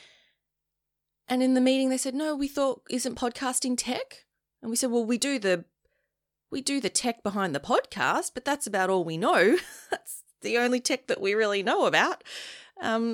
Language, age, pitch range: English, 20-39, 155-225 Hz